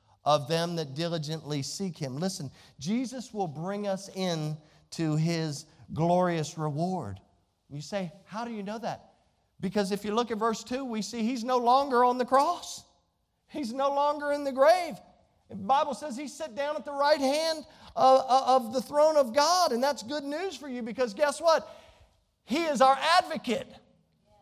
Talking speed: 180 wpm